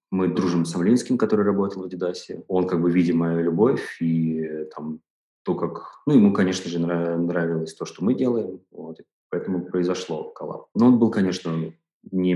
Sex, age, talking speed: male, 20-39, 185 wpm